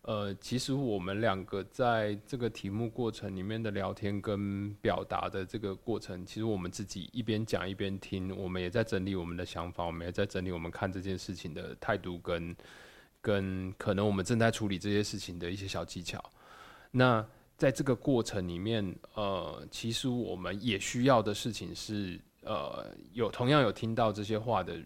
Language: Chinese